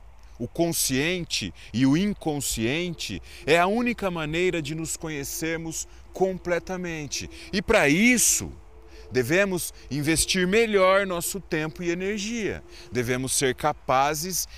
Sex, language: male, Portuguese